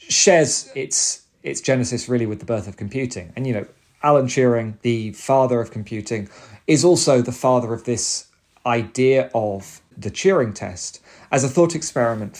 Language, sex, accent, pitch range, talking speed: English, male, British, 110-135 Hz, 165 wpm